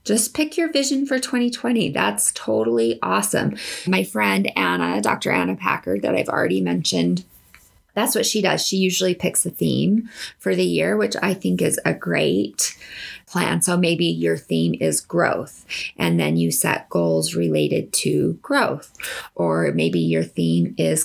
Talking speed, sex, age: 160 wpm, female, 30-49